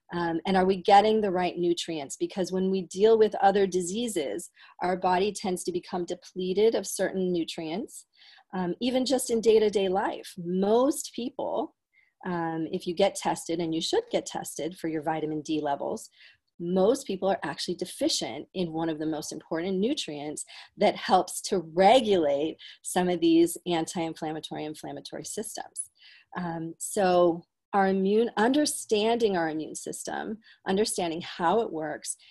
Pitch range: 165-195 Hz